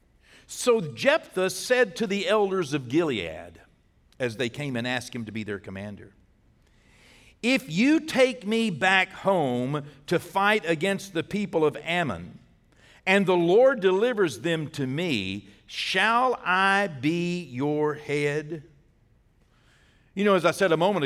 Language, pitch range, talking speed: English, 145-235 Hz, 140 wpm